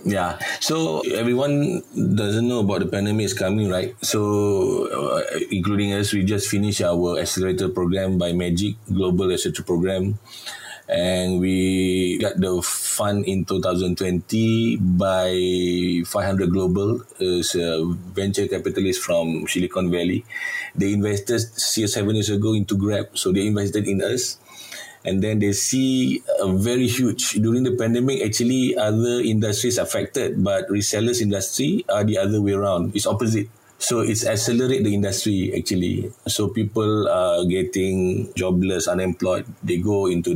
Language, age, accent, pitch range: English, 30-49, Malaysian, 95-110 Hz